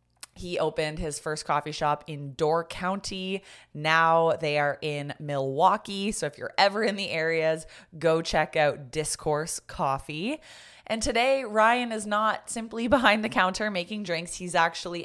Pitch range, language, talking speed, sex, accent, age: 160-205 Hz, English, 155 wpm, female, American, 20-39